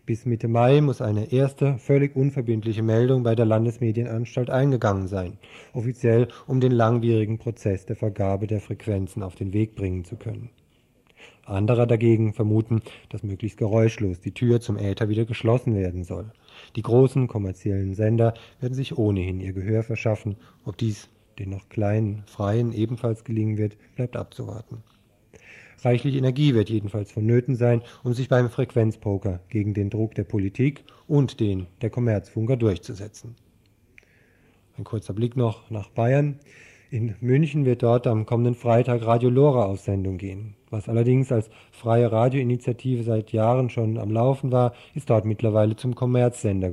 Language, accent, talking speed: German, German, 150 wpm